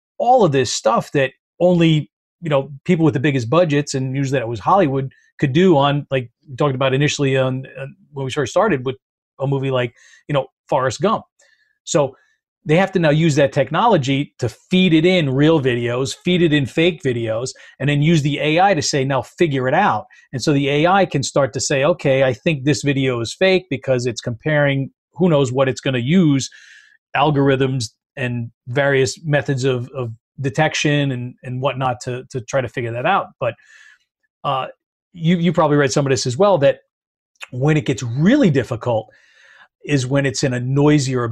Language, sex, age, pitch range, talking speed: English, male, 40-59, 130-155 Hz, 200 wpm